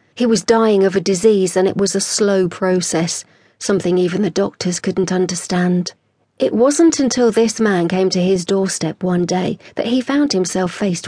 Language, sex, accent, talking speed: English, female, British, 185 wpm